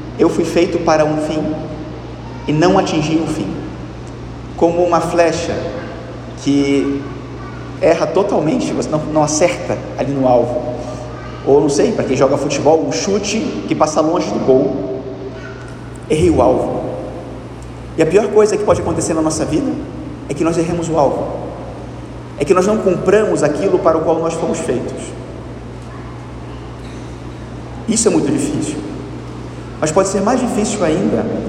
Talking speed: 150 wpm